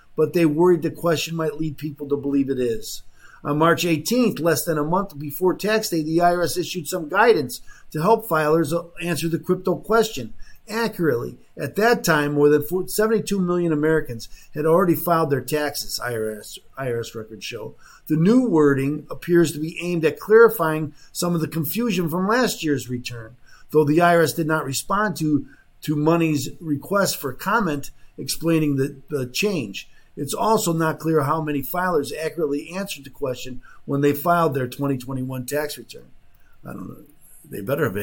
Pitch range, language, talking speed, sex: 135-170 Hz, English, 170 wpm, male